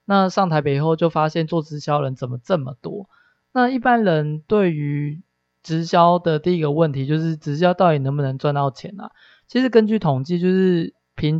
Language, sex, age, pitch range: Chinese, male, 20-39, 140-175 Hz